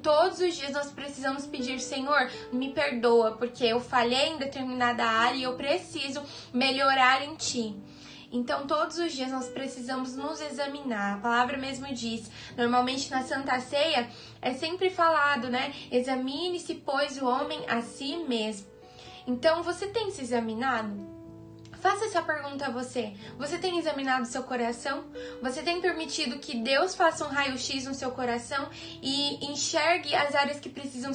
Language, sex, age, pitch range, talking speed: Portuguese, female, 20-39, 250-290 Hz, 155 wpm